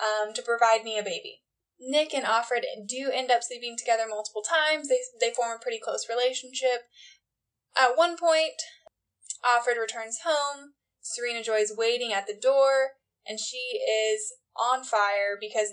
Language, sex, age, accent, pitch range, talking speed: English, female, 10-29, American, 215-285 Hz, 160 wpm